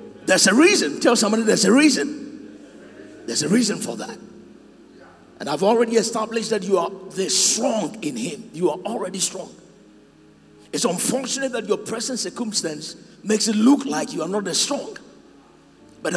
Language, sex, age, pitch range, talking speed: English, male, 50-69, 220-310 Hz, 165 wpm